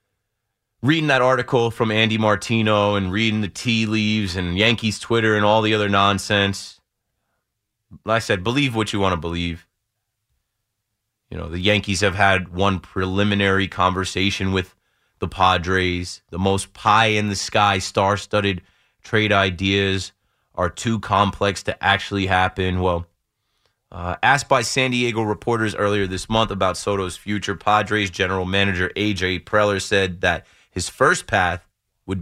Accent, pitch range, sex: American, 95-110 Hz, male